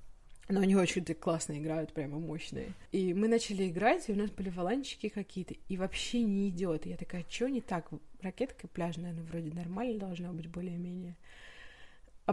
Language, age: Russian, 20-39